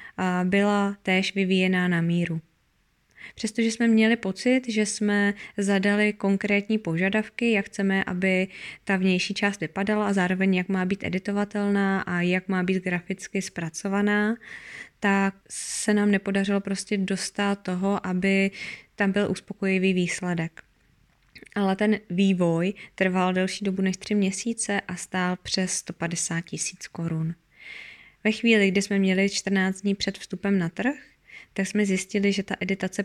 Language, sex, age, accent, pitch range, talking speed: Czech, female, 20-39, native, 180-200 Hz, 140 wpm